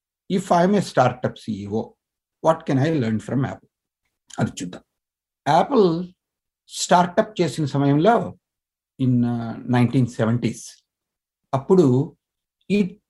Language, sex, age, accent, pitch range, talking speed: Telugu, male, 60-79, native, 125-170 Hz, 110 wpm